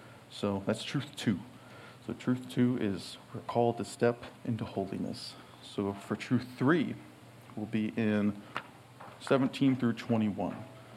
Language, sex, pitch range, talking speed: English, male, 105-125 Hz, 130 wpm